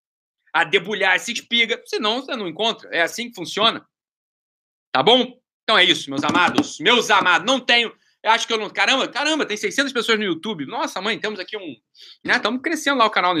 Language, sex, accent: Portuguese, male, Brazilian